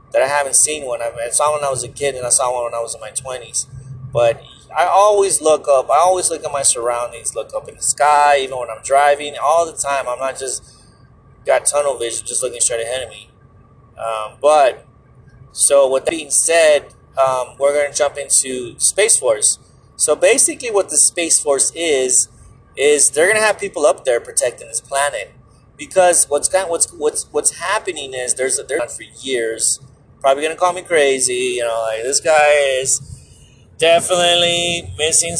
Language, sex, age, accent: English, male, 30-49, American